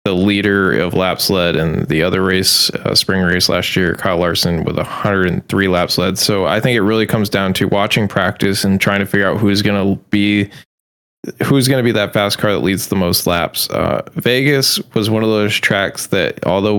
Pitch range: 95-110 Hz